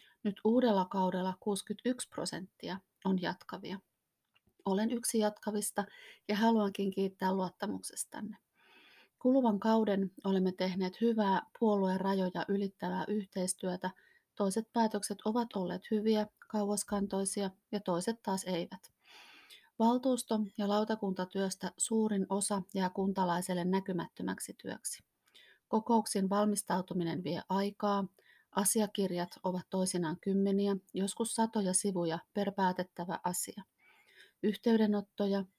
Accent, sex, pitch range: native, female, 185-210 Hz